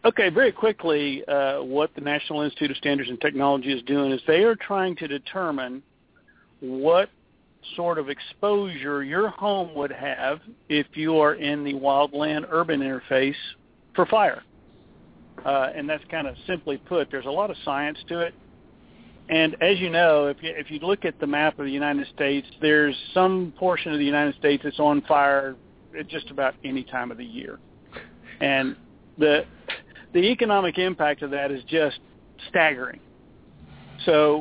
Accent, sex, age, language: American, male, 50-69, English